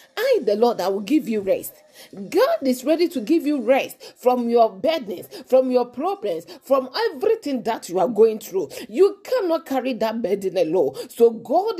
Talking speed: 185 wpm